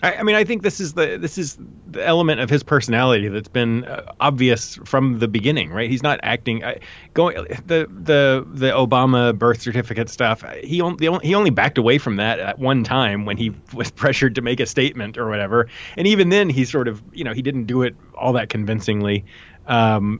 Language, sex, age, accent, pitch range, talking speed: English, male, 30-49, American, 110-140 Hz, 215 wpm